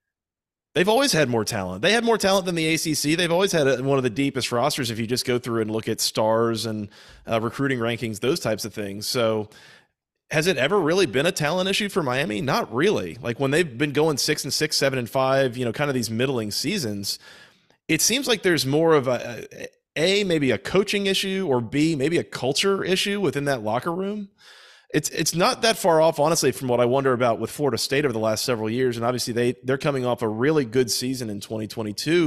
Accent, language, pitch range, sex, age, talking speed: American, English, 120-160 Hz, male, 30-49, 230 wpm